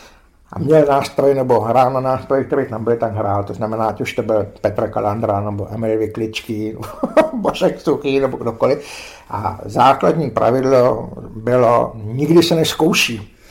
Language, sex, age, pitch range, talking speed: Czech, male, 60-79, 105-135 Hz, 155 wpm